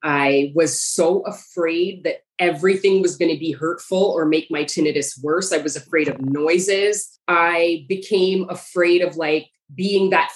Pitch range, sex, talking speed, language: 170-210 Hz, female, 160 wpm, English